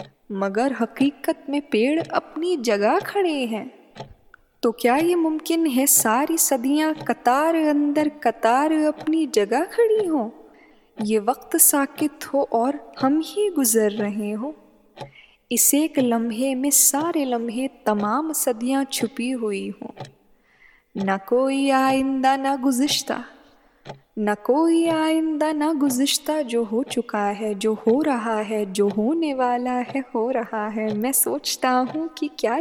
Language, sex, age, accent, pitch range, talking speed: Hindi, female, 10-29, native, 230-310 Hz, 135 wpm